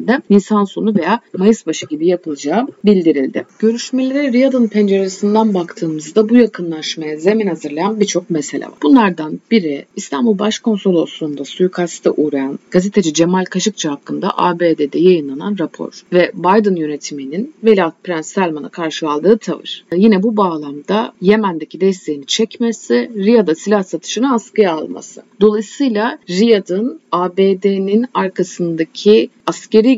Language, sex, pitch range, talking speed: Turkish, female, 160-215 Hz, 115 wpm